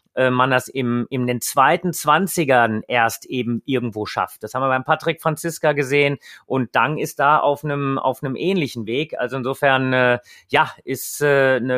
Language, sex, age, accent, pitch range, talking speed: German, male, 30-49, German, 135-160 Hz, 175 wpm